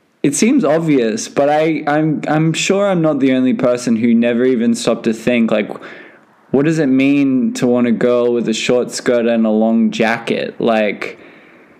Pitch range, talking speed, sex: 120-195 Hz, 190 wpm, male